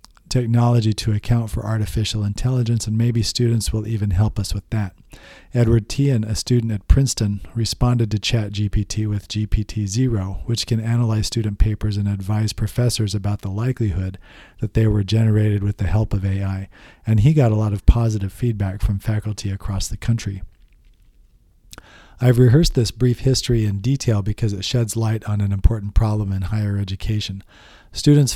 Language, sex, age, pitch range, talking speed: English, male, 40-59, 100-115 Hz, 165 wpm